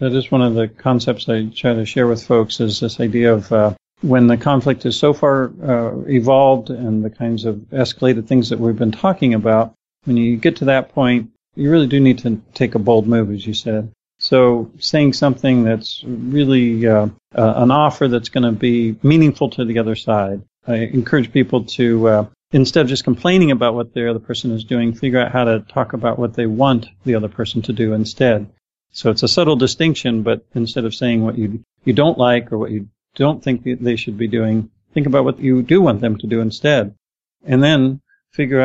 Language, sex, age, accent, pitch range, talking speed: English, male, 40-59, American, 115-135 Hz, 215 wpm